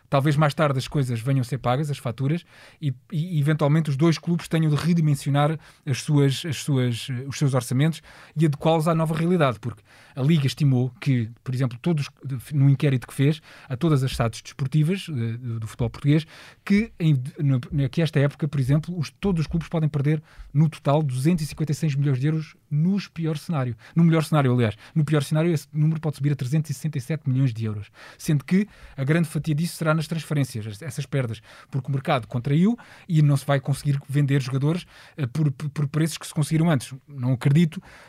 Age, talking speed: 20-39, 180 wpm